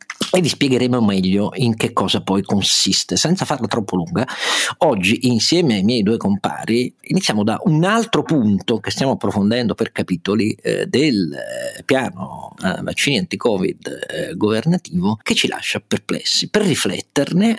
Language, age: Italian, 50-69